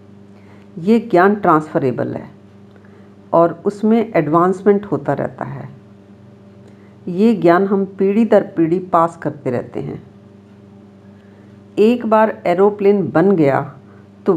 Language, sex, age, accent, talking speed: Hindi, female, 50-69, native, 110 wpm